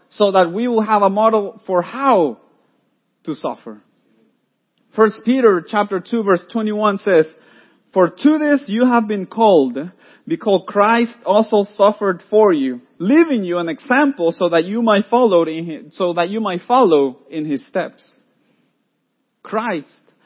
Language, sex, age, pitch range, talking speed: English, male, 40-59, 180-235 Hz, 135 wpm